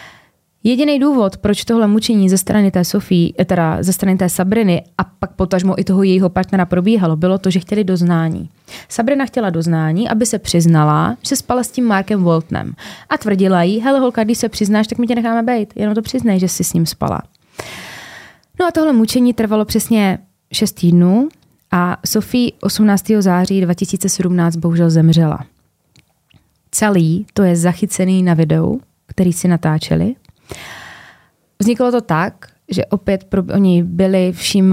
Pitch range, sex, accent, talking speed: 180-215 Hz, female, native, 155 wpm